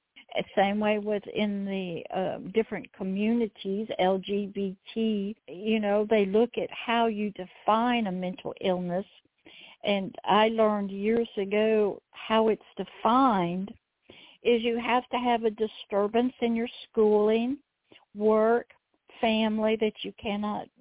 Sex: female